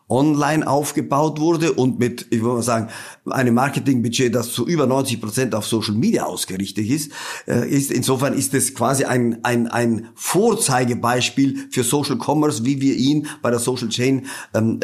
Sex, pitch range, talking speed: male, 120-165 Hz, 165 wpm